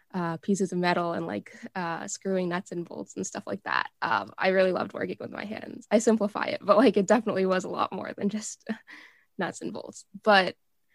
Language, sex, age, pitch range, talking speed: English, female, 10-29, 180-210 Hz, 220 wpm